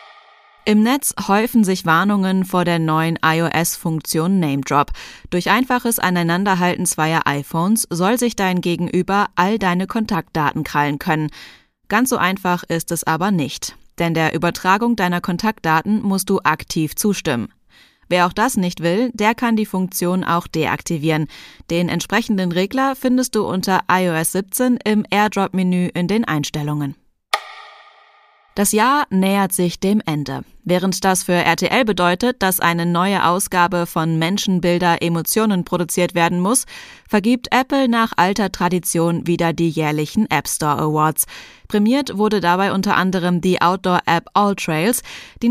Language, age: German, 20-39